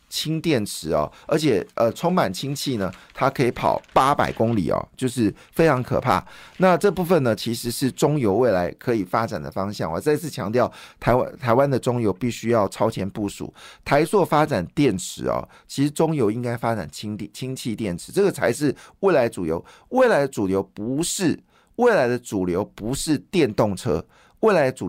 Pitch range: 110-150 Hz